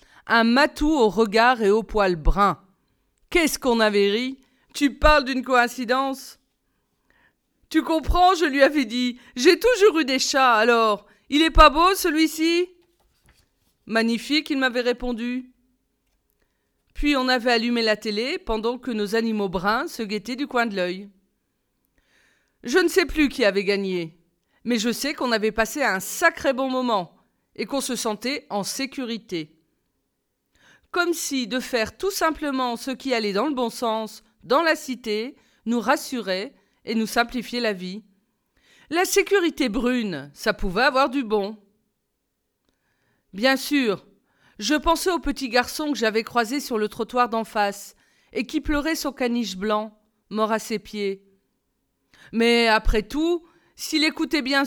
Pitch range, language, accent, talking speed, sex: 220-290 Hz, French, French, 160 wpm, female